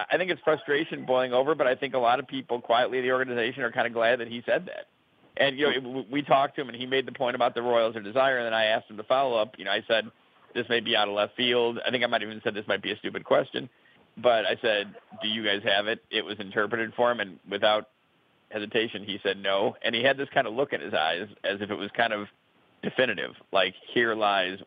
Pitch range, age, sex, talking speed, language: 105-125 Hz, 40-59, male, 275 wpm, English